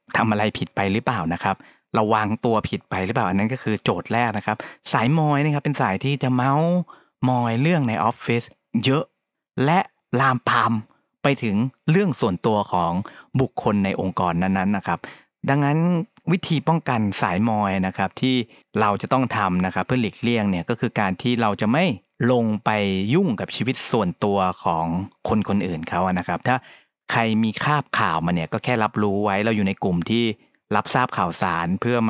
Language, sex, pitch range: Thai, male, 100-130 Hz